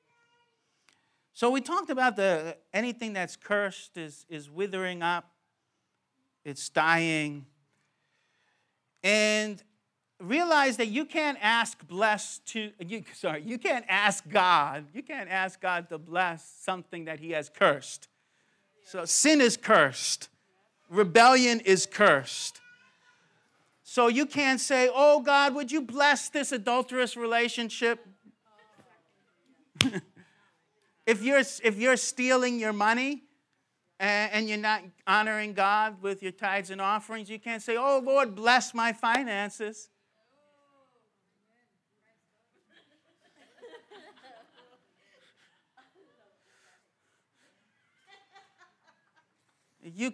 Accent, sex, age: American, male, 50-69